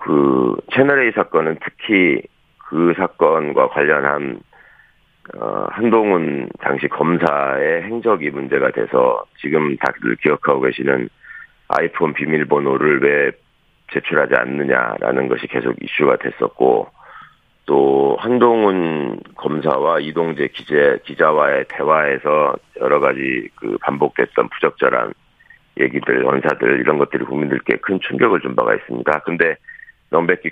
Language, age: Korean, 40-59